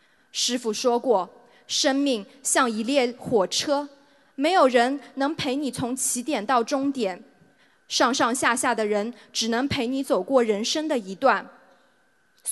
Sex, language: female, Chinese